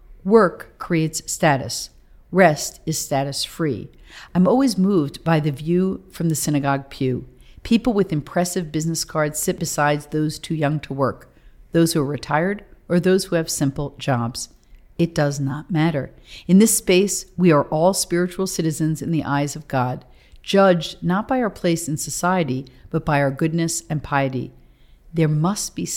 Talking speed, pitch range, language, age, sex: 165 wpm, 140-180 Hz, English, 50-69, female